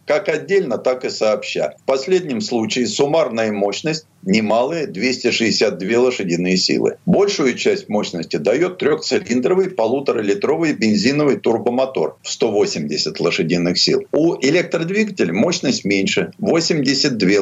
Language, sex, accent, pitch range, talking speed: Russian, male, native, 110-185 Hz, 110 wpm